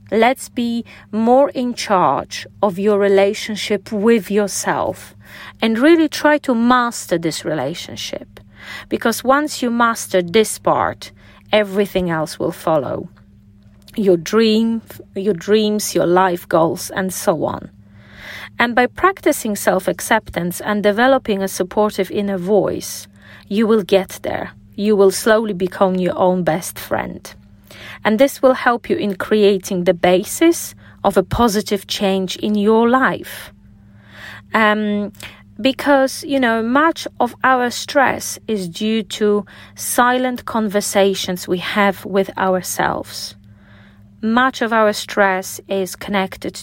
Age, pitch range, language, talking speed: 40-59, 180-225 Hz, English, 125 wpm